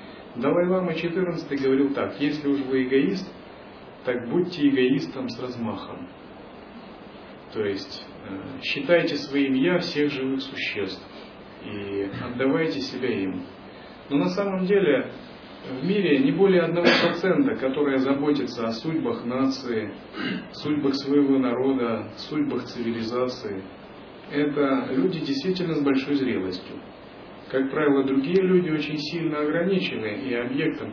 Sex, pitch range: male, 125-155 Hz